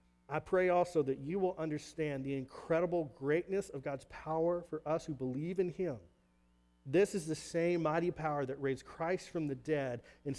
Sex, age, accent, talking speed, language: male, 40-59, American, 185 wpm, English